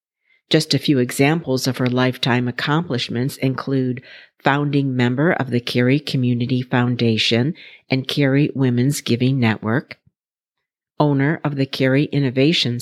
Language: English